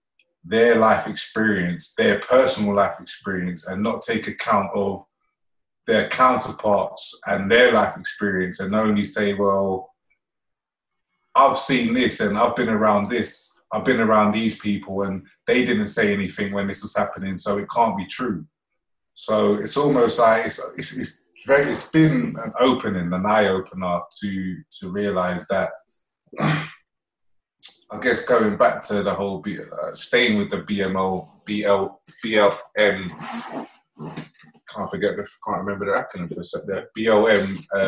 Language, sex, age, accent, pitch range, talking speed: English, male, 20-39, British, 95-120 Hz, 145 wpm